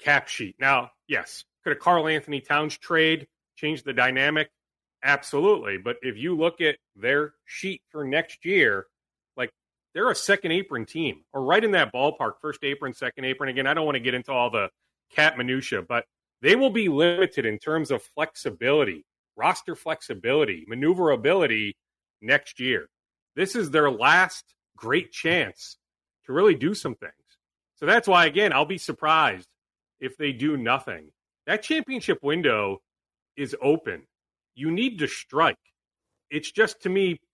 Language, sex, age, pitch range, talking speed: English, male, 30-49, 135-190 Hz, 160 wpm